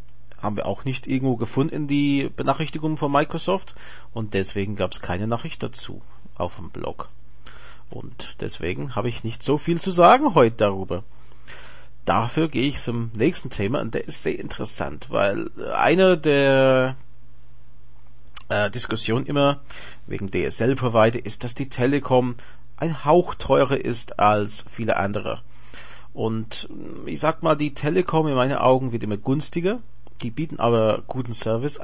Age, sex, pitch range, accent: 40-59, male, 115-145 Hz, Austrian